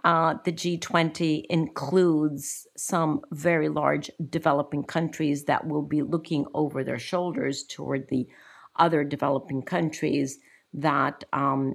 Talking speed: 115 wpm